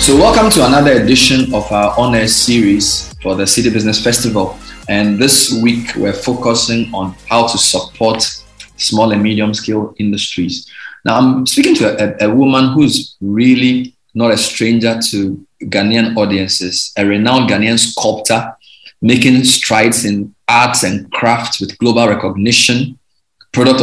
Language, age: English, 20-39